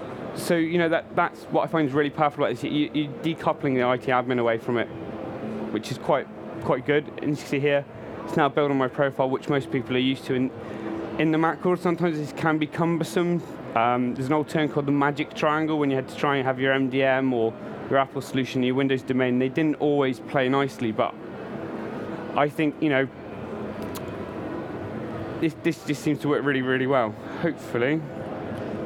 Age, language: 20-39, English